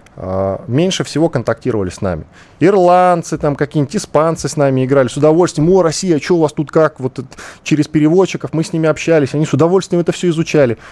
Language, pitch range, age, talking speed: Russian, 110-155 Hz, 20-39, 185 wpm